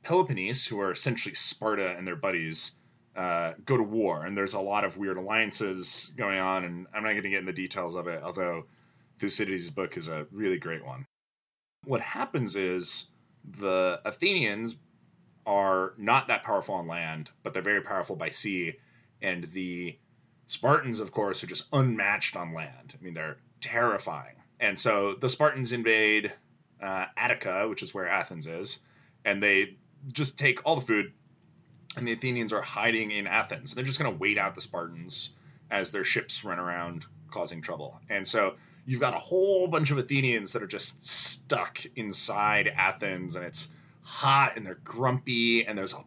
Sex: male